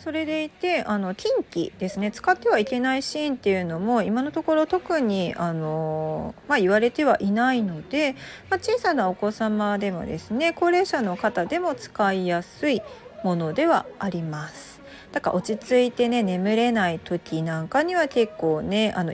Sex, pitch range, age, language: female, 175-280 Hz, 40-59, Japanese